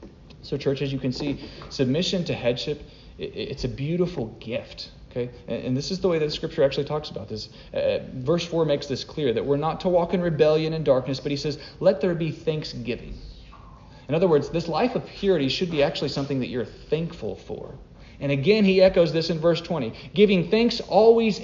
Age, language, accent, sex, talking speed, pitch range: 40-59, English, American, male, 205 wpm, 135-185 Hz